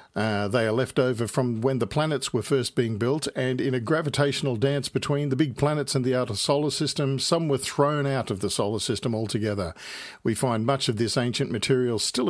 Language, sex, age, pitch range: English, male, 50-69, 110-140 Hz